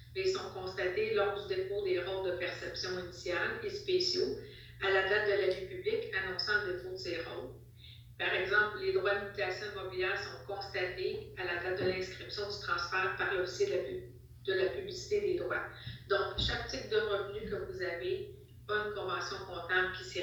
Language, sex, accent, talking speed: French, female, Canadian, 185 wpm